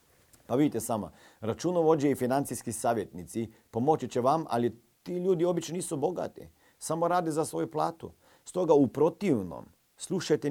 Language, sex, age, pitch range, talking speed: Croatian, male, 40-59, 110-160 Hz, 145 wpm